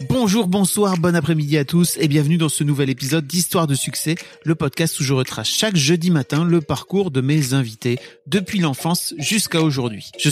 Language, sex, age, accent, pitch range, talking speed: French, male, 40-59, French, 130-165 Hz, 190 wpm